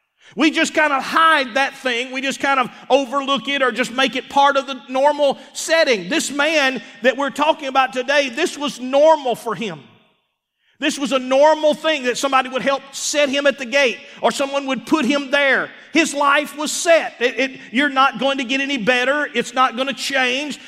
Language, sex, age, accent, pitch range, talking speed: English, male, 40-59, American, 260-300 Hz, 205 wpm